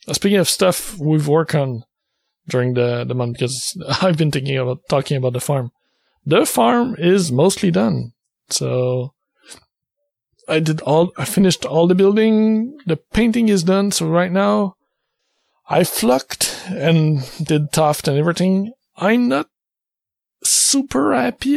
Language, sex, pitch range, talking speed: English, male, 135-180 Hz, 140 wpm